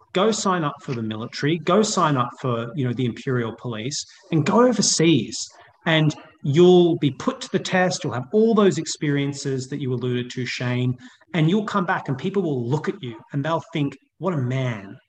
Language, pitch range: English, 125-165 Hz